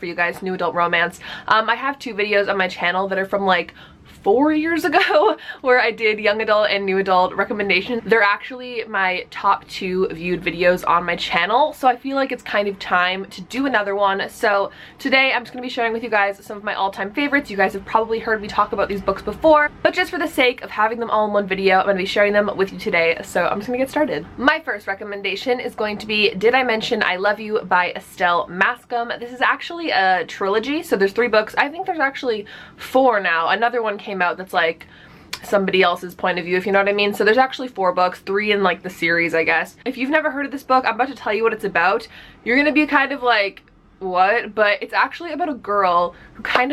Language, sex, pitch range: Chinese, female, 190-250 Hz